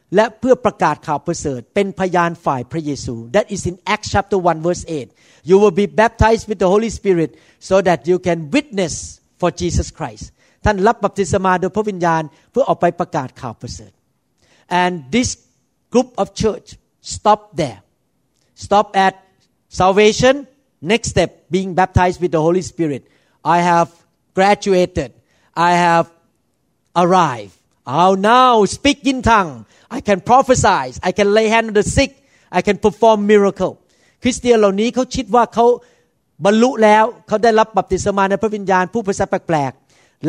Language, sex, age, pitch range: Thai, male, 50-69, 170-215 Hz